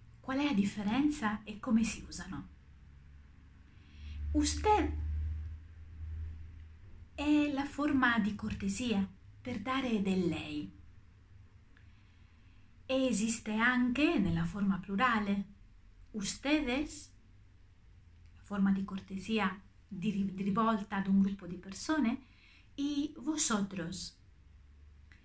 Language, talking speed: Italian, 95 wpm